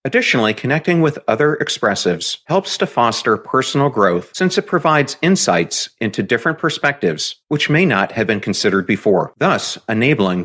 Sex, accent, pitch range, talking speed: male, American, 95-155 Hz, 150 wpm